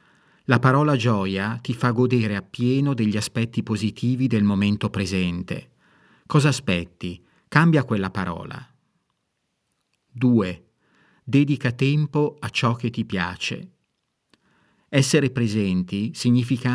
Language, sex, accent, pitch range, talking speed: Italian, male, native, 100-125 Hz, 105 wpm